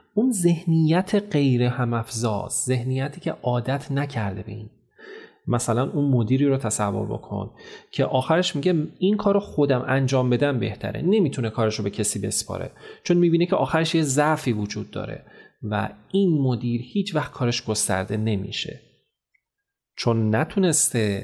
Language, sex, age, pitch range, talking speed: Persian, male, 30-49, 110-155 Hz, 135 wpm